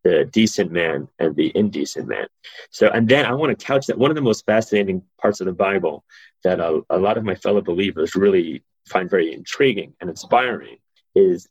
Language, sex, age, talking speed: English, male, 30-49, 205 wpm